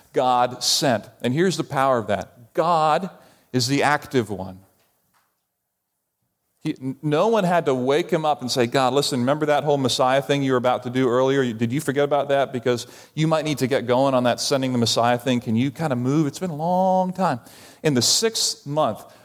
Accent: American